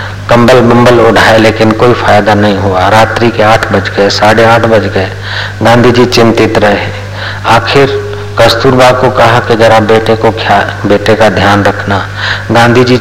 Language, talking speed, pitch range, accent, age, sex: Hindi, 155 wpm, 100-115 Hz, native, 40-59, male